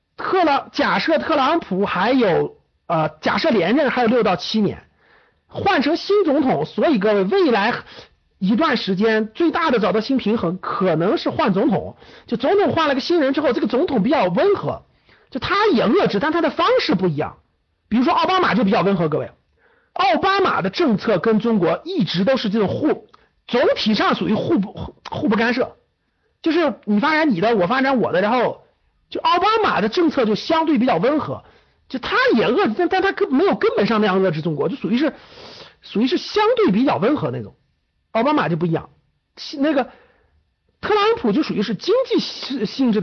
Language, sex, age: Chinese, male, 50-69